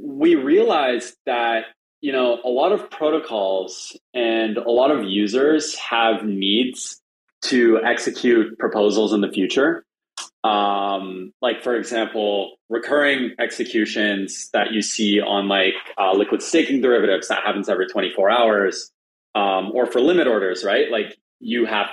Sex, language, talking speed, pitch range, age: male, English, 140 wpm, 100-125 Hz, 20-39